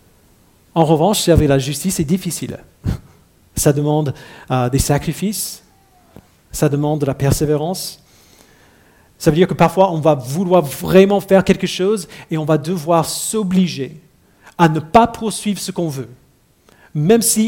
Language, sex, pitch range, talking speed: French, male, 135-175 Hz, 150 wpm